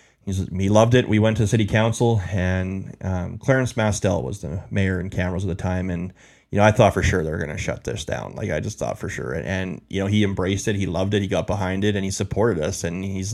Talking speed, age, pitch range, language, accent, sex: 270 wpm, 30-49, 95-105 Hz, English, American, male